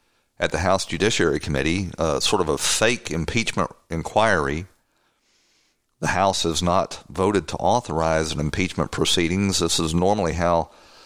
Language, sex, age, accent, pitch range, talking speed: English, male, 50-69, American, 80-100 Hz, 140 wpm